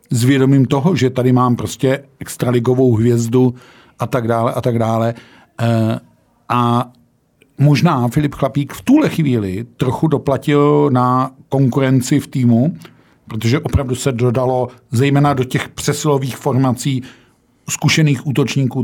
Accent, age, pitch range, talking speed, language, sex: native, 50-69, 120-145 Hz, 125 wpm, Czech, male